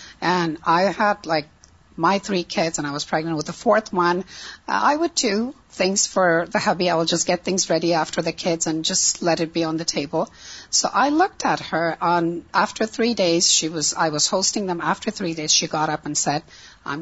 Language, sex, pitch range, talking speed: Urdu, female, 165-235 Hz, 225 wpm